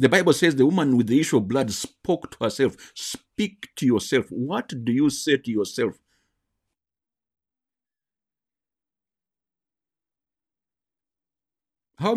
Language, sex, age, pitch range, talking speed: English, male, 50-69, 95-145 Hz, 115 wpm